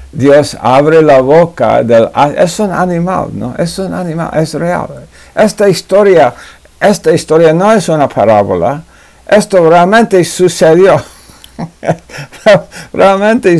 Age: 60-79